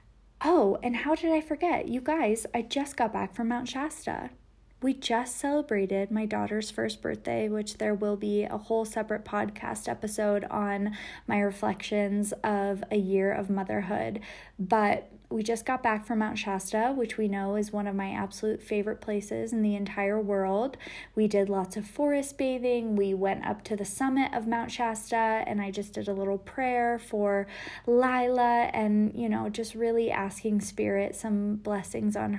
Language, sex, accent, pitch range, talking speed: English, female, American, 200-230 Hz, 175 wpm